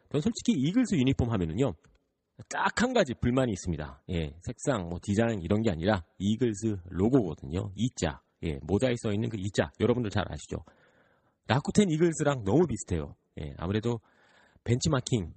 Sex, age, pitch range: male, 30-49, 95-130 Hz